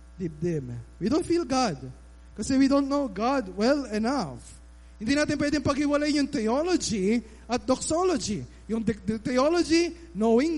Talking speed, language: 140 wpm, Filipino